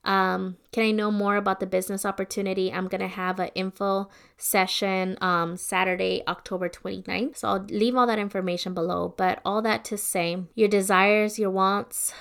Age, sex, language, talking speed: 20-39, female, English, 175 wpm